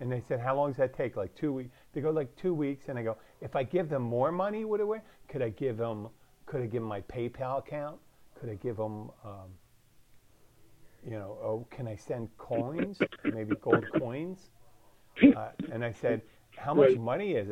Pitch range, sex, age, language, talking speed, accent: 115-160 Hz, male, 50-69, English, 210 wpm, American